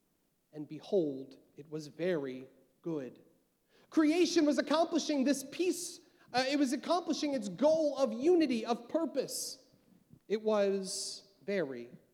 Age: 30-49